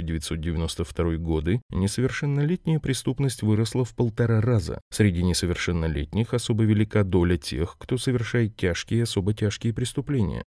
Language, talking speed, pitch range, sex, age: Russian, 115 wpm, 90-125 Hz, male, 30-49